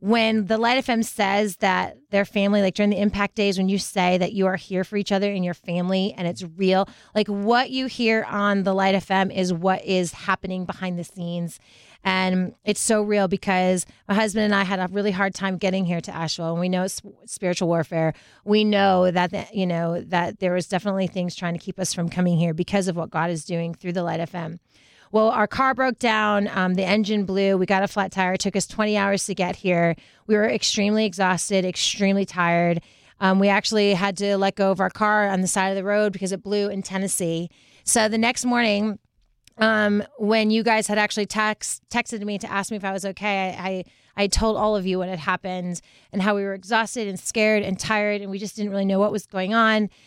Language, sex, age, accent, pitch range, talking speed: English, female, 30-49, American, 185-210 Hz, 230 wpm